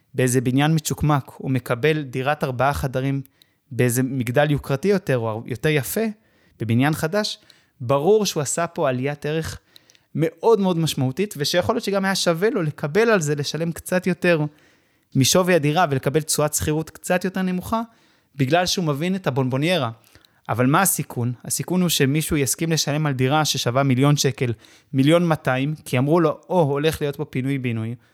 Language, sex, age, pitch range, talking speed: Hebrew, male, 20-39, 130-165 Hz, 140 wpm